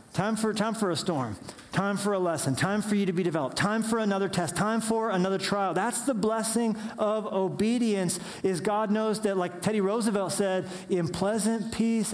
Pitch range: 160-200 Hz